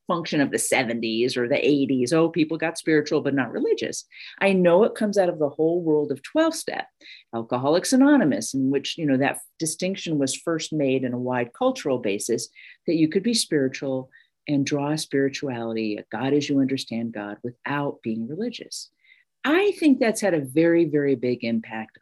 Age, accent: 50-69, American